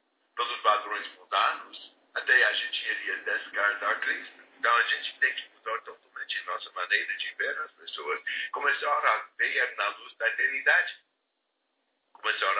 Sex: male